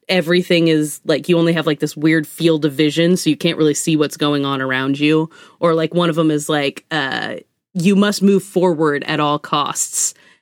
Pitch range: 150-180 Hz